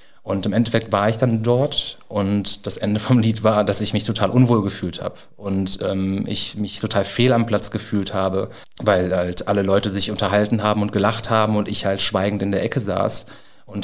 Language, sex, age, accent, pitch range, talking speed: German, male, 30-49, German, 95-110 Hz, 215 wpm